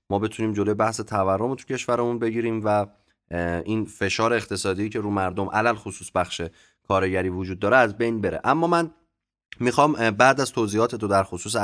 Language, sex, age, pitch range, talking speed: Persian, male, 20-39, 95-120 Hz, 175 wpm